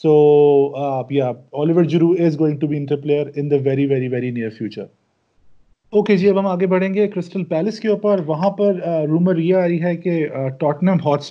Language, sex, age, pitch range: Urdu, male, 30-49, 140-170 Hz